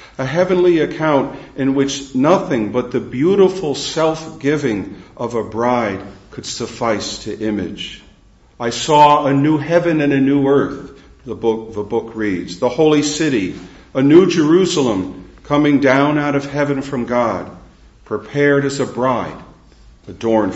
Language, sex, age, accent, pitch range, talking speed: English, male, 50-69, American, 115-145 Hz, 145 wpm